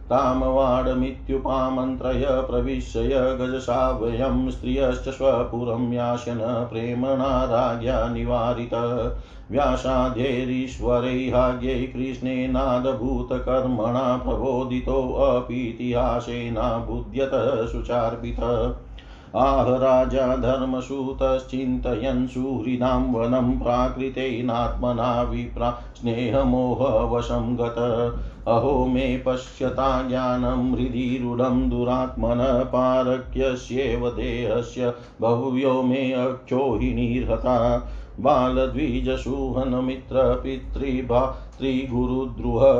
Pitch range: 120-130 Hz